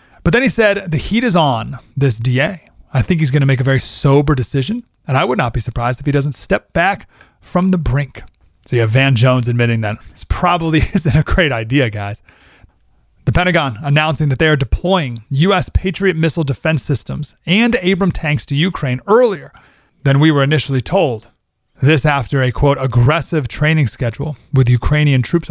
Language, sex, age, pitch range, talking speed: English, male, 30-49, 125-170 Hz, 190 wpm